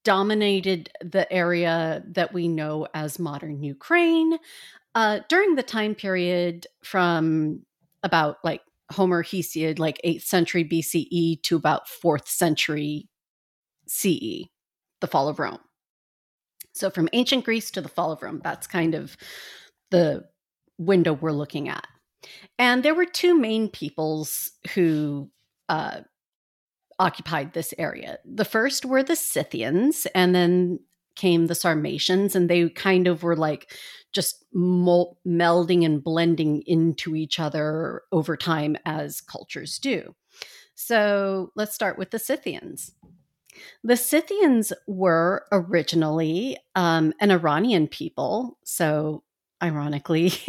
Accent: American